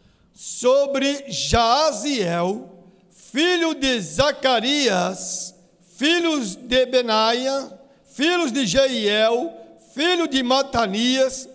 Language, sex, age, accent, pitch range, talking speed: Portuguese, male, 60-79, Brazilian, 210-285 Hz, 75 wpm